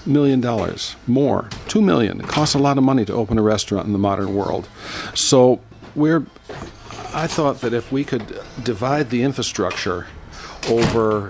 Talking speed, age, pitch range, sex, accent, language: 165 wpm, 50-69, 105-125 Hz, male, American, English